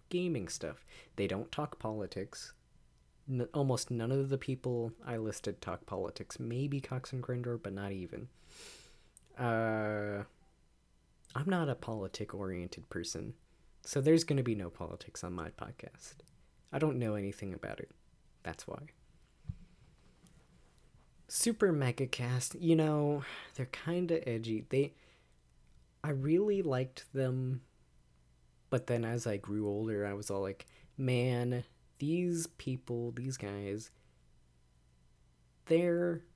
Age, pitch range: 30-49, 95-140 Hz